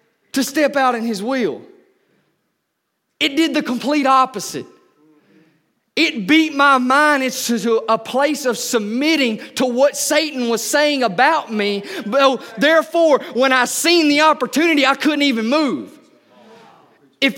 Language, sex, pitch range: English, male, 250-305 Hz